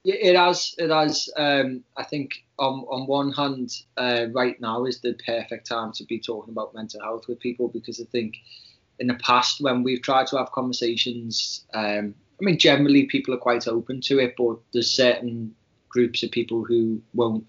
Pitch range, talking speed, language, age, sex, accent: 115-125 Hz, 195 wpm, English, 20-39, male, British